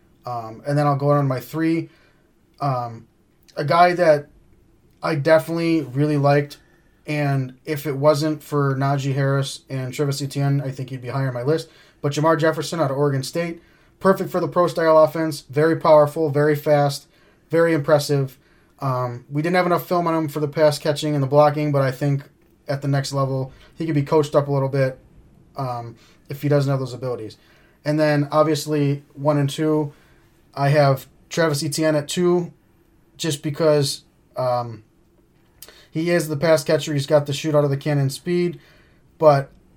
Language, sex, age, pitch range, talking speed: English, male, 20-39, 135-155 Hz, 180 wpm